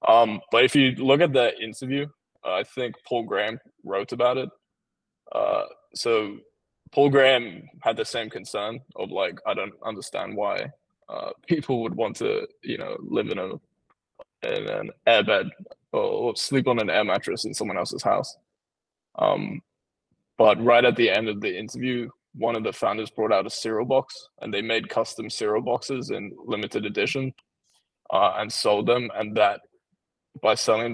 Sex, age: male, 20-39